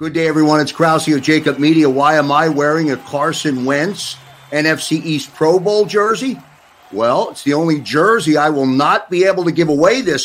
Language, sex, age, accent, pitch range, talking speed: English, male, 50-69, American, 155-235 Hz, 200 wpm